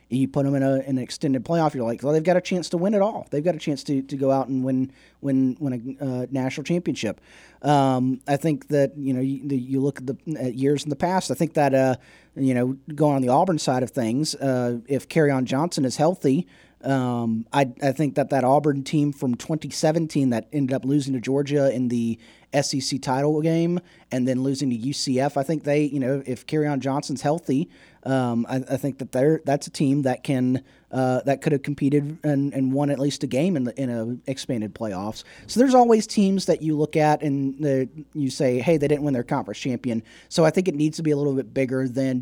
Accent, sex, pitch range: American, male, 130-150 Hz